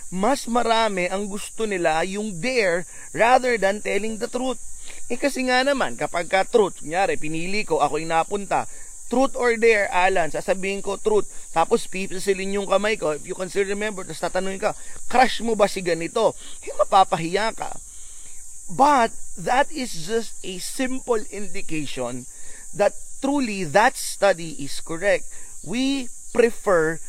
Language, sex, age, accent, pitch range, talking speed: Filipino, male, 30-49, native, 160-230 Hz, 145 wpm